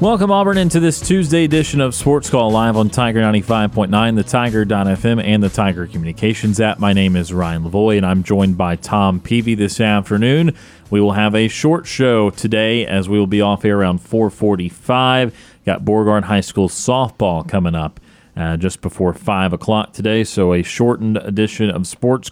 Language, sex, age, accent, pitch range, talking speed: English, male, 30-49, American, 95-115 Hz, 180 wpm